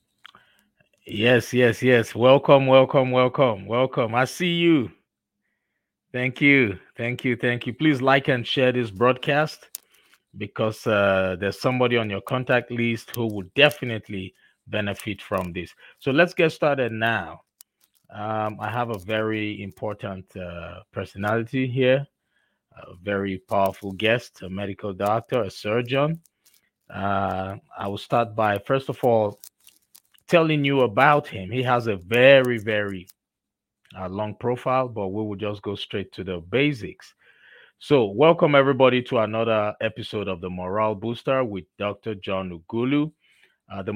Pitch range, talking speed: 100-130 Hz, 140 wpm